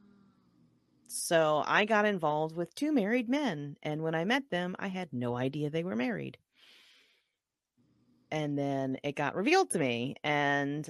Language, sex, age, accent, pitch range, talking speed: English, female, 30-49, American, 140-175 Hz, 155 wpm